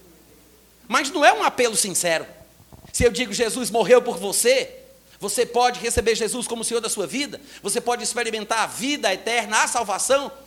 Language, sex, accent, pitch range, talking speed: Portuguese, male, Brazilian, 210-280 Hz, 180 wpm